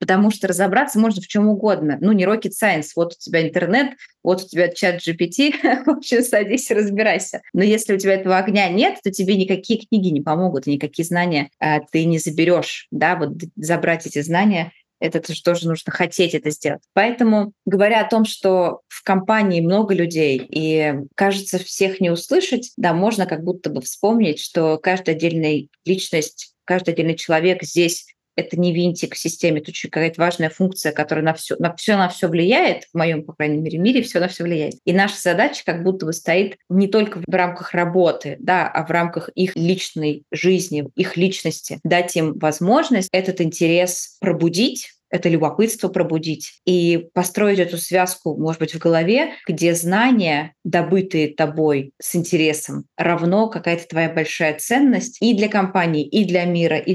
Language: Russian